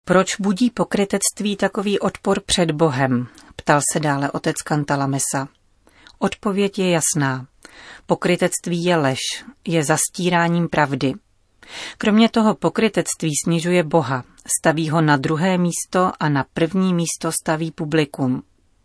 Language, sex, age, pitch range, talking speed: Czech, female, 40-59, 150-180 Hz, 120 wpm